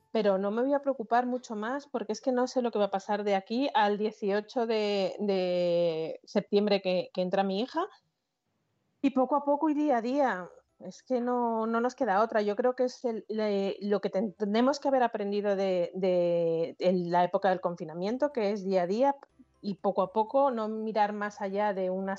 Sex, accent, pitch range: female, Spanish, 200-260 Hz